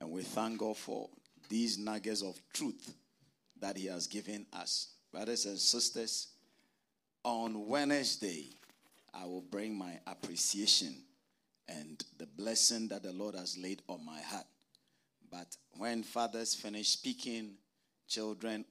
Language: English